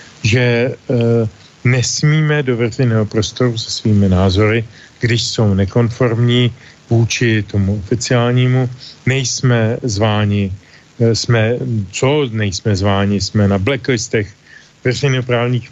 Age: 40-59